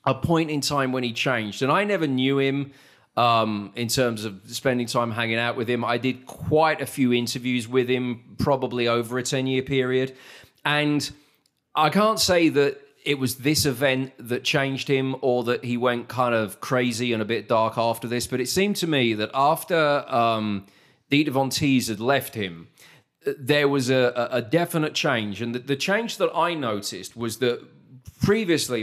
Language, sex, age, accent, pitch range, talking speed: English, male, 30-49, British, 115-140 Hz, 185 wpm